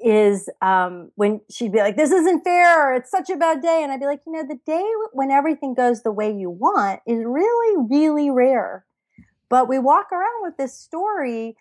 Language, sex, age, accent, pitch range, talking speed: English, female, 40-59, American, 205-300 Hz, 205 wpm